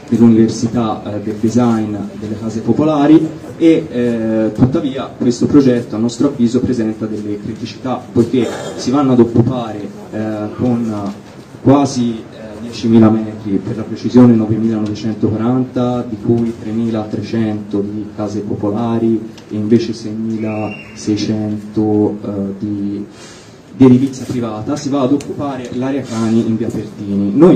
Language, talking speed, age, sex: Italian, 125 wpm, 20-39, male